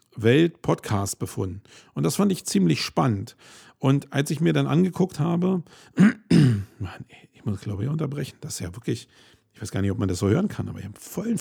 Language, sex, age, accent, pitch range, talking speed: German, male, 50-69, German, 115-155 Hz, 210 wpm